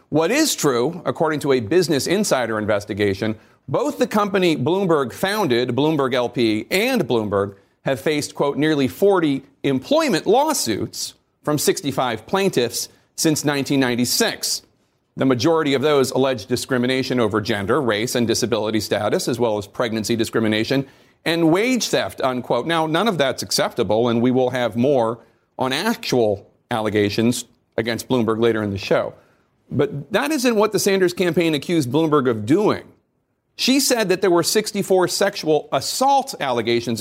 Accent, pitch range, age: American, 120-170 Hz, 40-59